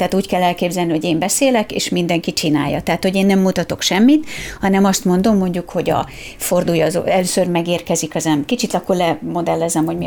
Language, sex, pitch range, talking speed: Hungarian, female, 165-215 Hz, 190 wpm